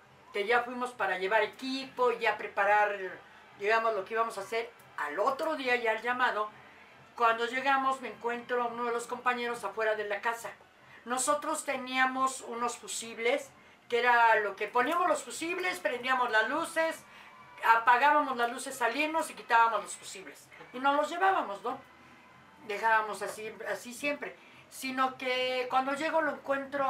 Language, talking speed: Spanish, 155 wpm